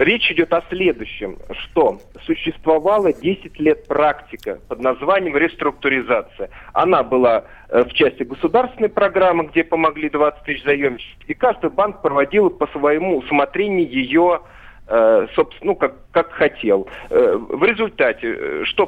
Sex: male